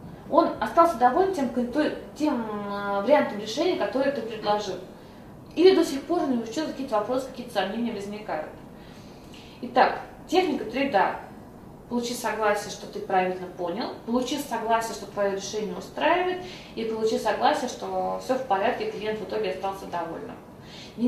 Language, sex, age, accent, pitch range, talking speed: Russian, female, 20-39, native, 210-275 Hz, 140 wpm